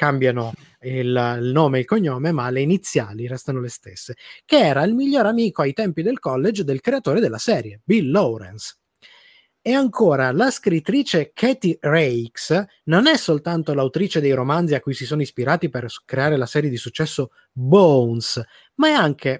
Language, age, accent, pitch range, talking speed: Italian, 20-39, native, 135-215 Hz, 165 wpm